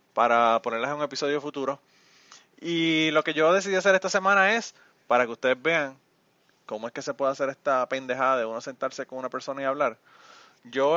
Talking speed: 195 wpm